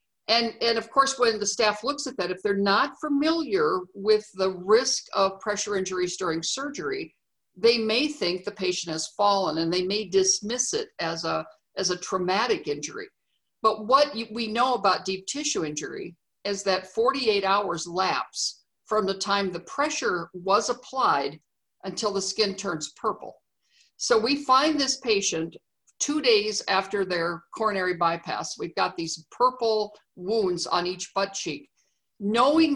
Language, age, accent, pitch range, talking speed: English, 50-69, American, 185-255 Hz, 155 wpm